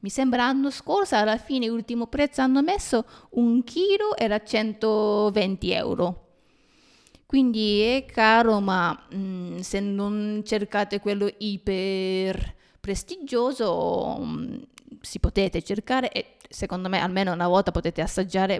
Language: Italian